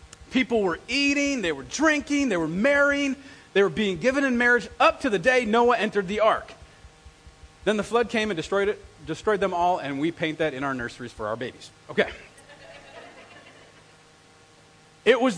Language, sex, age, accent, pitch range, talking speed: English, male, 40-59, American, 165-250 Hz, 180 wpm